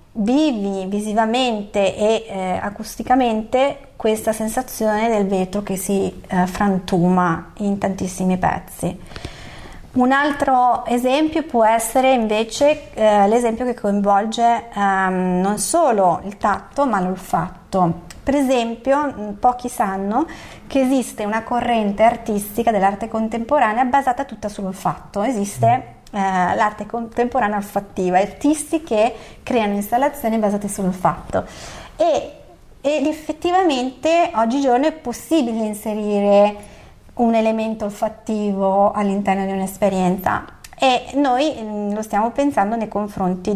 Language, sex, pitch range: Italian, female, 200-245 Hz